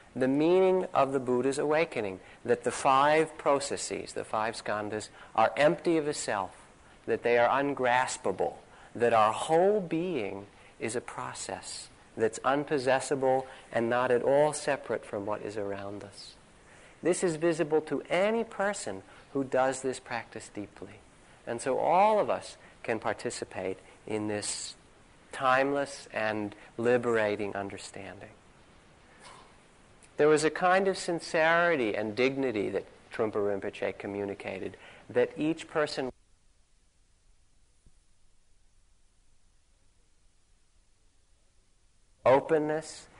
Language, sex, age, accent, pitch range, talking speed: English, male, 50-69, American, 100-150 Hz, 115 wpm